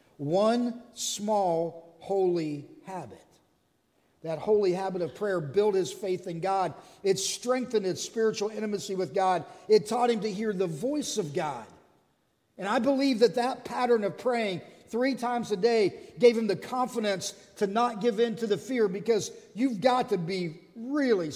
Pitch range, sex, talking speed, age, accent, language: 170-235 Hz, male, 165 wpm, 40-59, American, English